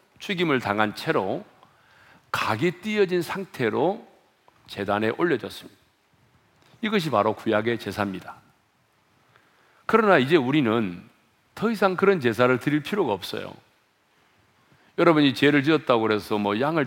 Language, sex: Korean, male